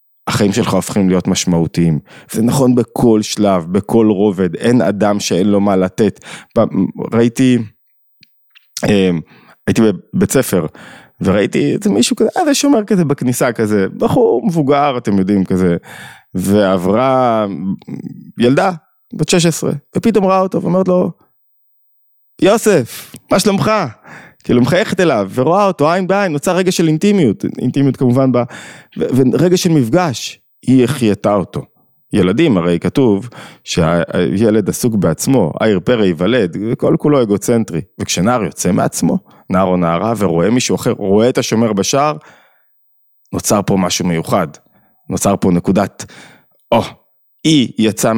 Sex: male